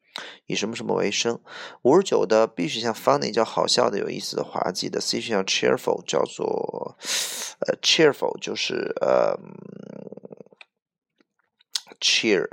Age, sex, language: 20-39, male, Chinese